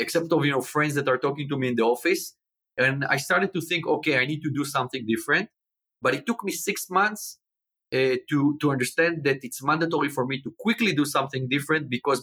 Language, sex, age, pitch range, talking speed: English, male, 30-49, 135-180 Hz, 225 wpm